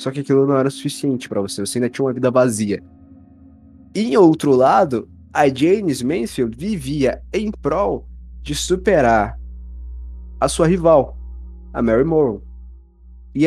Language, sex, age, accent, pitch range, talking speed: Portuguese, male, 20-39, Brazilian, 115-155 Hz, 145 wpm